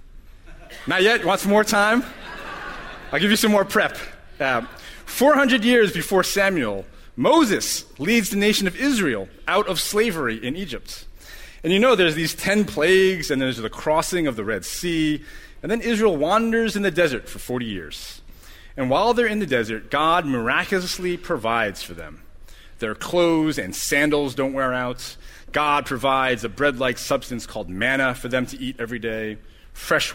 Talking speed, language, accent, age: 170 wpm, English, American, 30-49